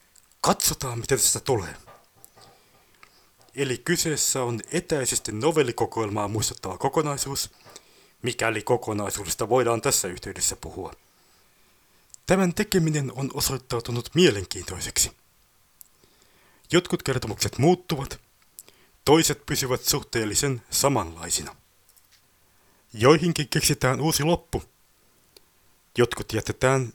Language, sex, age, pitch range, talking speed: Finnish, male, 30-49, 105-145 Hz, 80 wpm